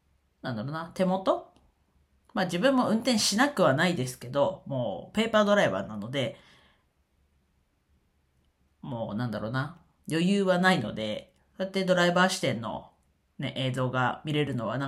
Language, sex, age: Japanese, female, 40-59